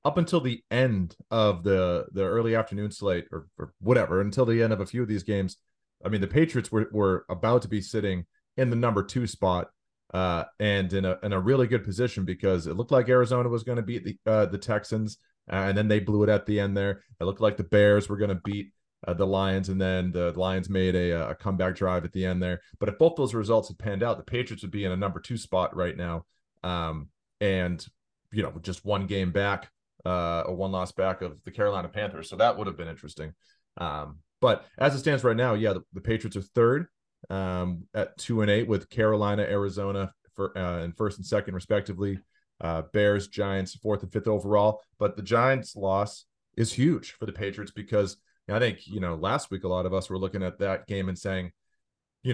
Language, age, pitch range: English, 30-49, 95-110 Hz